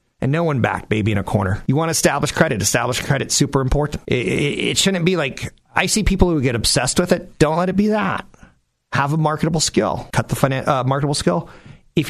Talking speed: 235 wpm